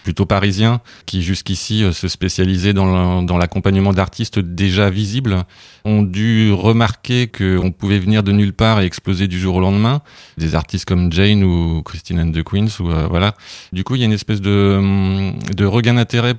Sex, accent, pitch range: male, French, 95-110 Hz